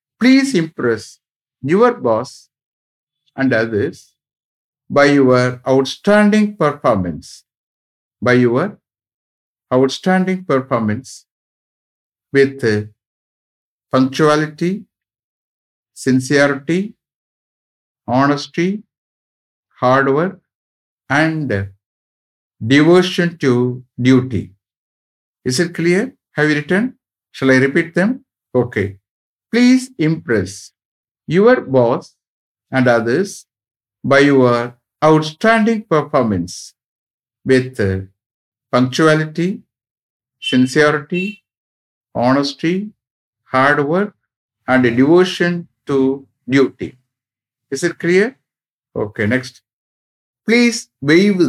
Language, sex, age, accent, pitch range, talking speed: English, male, 50-69, Indian, 115-175 Hz, 75 wpm